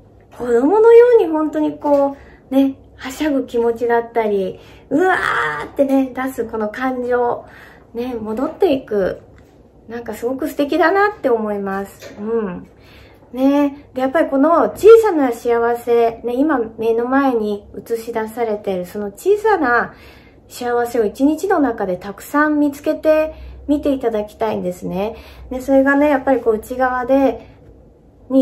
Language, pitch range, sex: Japanese, 215-280 Hz, female